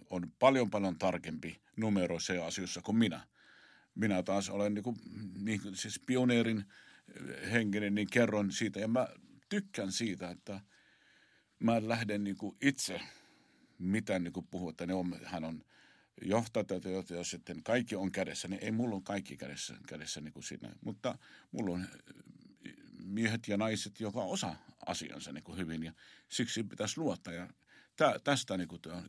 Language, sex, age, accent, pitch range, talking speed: Finnish, male, 50-69, native, 95-115 Hz, 155 wpm